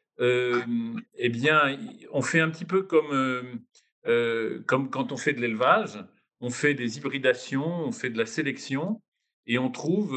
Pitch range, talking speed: 110-150 Hz, 175 wpm